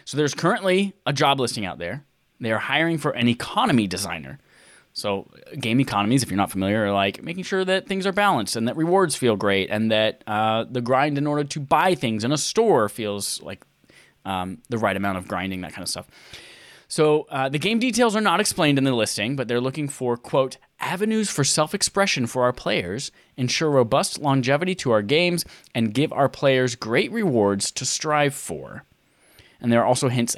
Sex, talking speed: male, 200 wpm